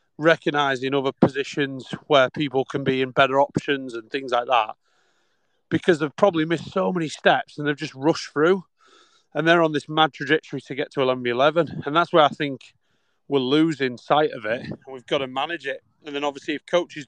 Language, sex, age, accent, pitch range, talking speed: English, male, 30-49, British, 135-165 Hz, 200 wpm